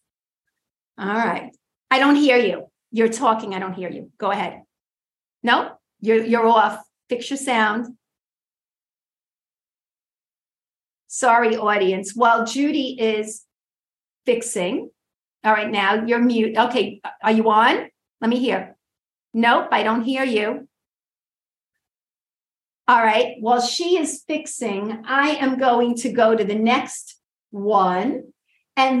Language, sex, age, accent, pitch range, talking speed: English, female, 50-69, American, 220-265 Hz, 125 wpm